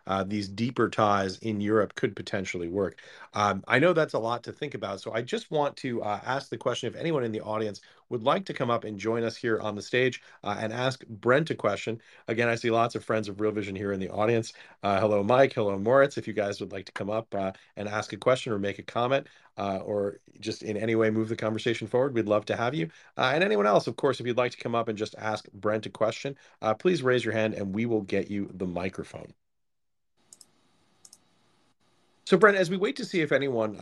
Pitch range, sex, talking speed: 100-120 Hz, male, 245 wpm